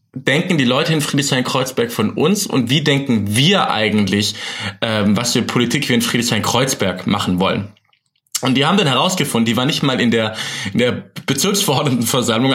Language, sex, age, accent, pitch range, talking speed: German, male, 20-39, German, 120-160 Hz, 165 wpm